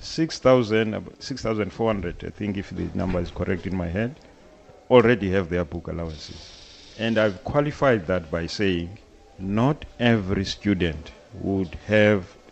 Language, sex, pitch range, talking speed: English, male, 90-110 Hz, 135 wpm